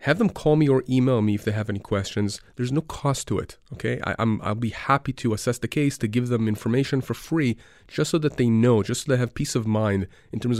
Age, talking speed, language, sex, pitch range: 30-49, 265 wpm, English, male, 105-135 Hz